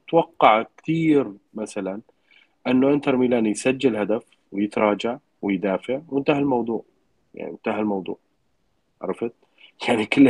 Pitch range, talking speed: 100-130 Hz, 105 wpm